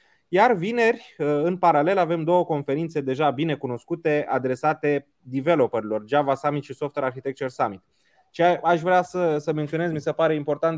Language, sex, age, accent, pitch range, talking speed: Romanian, male, 20-39, native, 140-170 Hz, 150 wpm